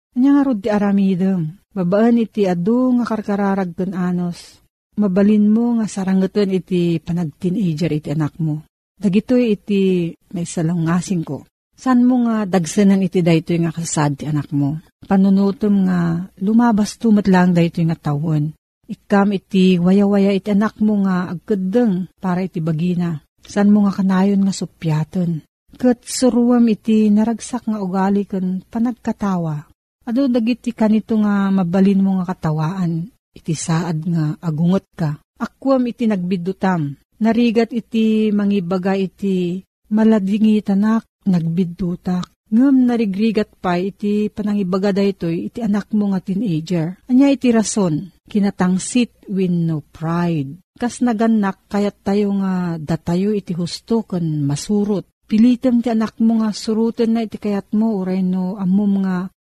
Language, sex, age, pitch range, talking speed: Filipino, female, 50-69, 175-215 Hz, 135 wpm